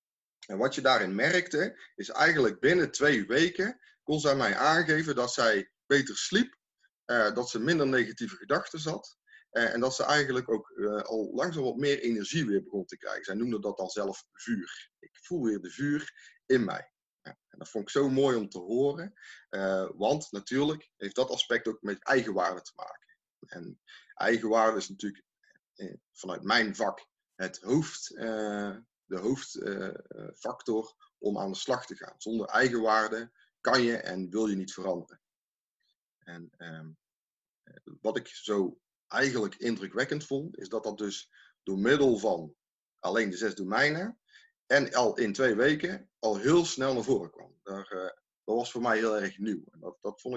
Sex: male